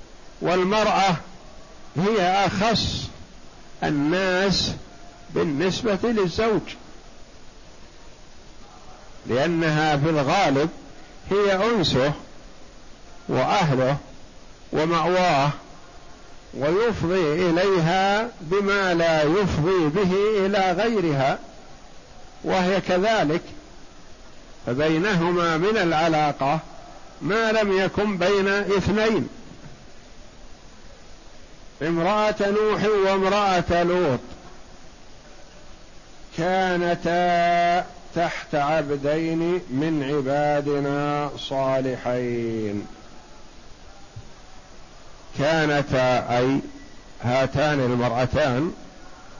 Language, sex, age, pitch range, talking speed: Arabic, male, 50-69, 140-185 Hz, 55 wpm